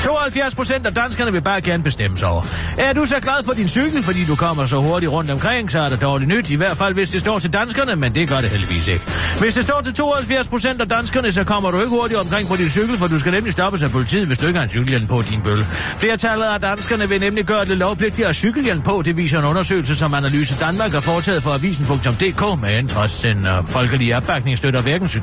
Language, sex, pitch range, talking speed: Danish, male, 130-205 Hz, 250 wpm